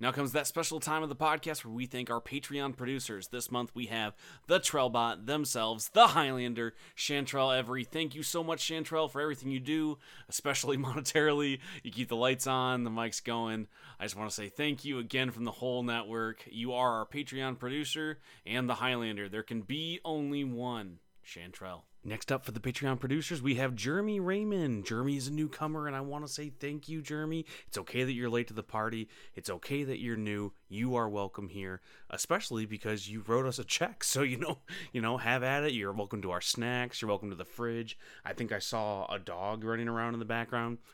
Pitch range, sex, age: 110-140 Hz, male, 30-49